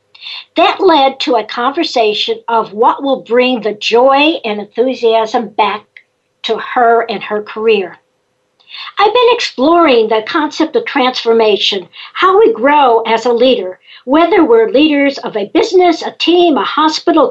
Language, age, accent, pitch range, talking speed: English, 60-79, American, 235-340 Hz, 145 wpm